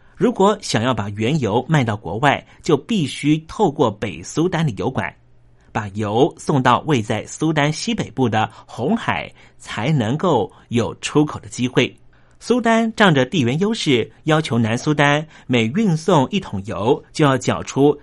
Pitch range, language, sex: 115-160 Hz, Chinese, male